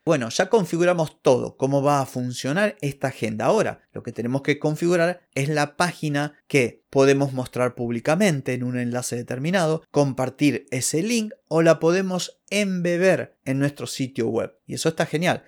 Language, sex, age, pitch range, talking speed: Spanish, male, 30-49, 125-165 Hz, 165 wpm